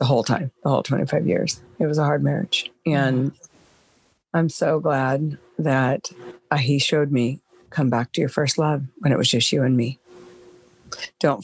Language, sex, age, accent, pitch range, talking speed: English, female, 50-69, American, 120-140 Hz, 180 wpm